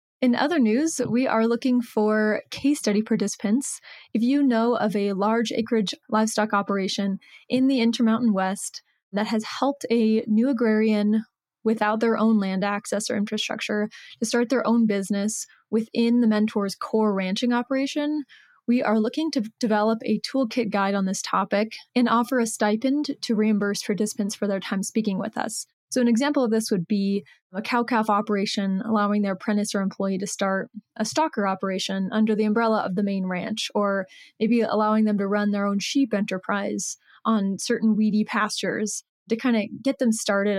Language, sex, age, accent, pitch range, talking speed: English, female, 20-39, American, 205-235 Hz, 175 wpm